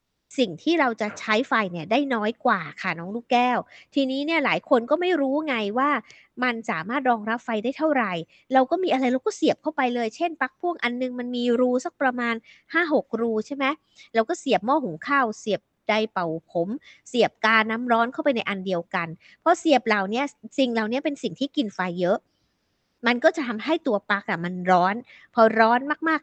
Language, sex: Thai, female